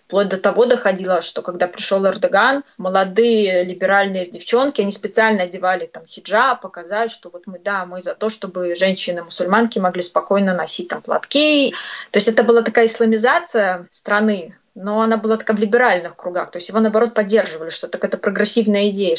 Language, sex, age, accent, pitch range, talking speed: Russian, female, 20-39, native, 190-230 Hz, 175 wpm